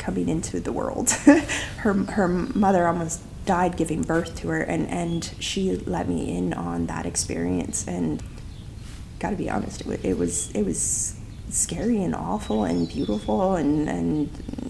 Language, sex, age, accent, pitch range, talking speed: English, female, 30-49, American, 150-210 Hz, 155 wpm